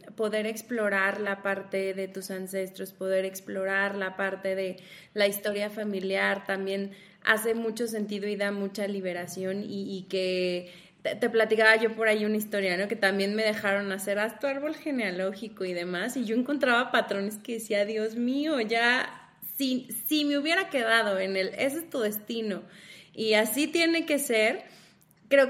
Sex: female